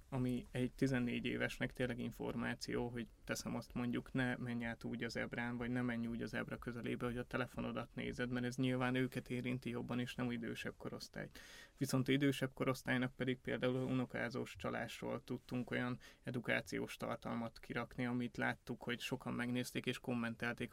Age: 20-39